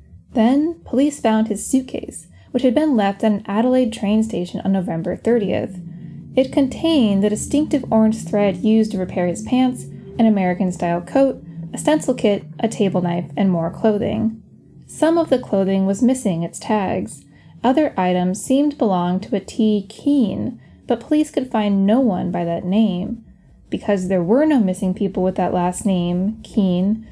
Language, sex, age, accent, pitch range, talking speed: English, female, 10-29, American, 185-255 Hz, 170 wpm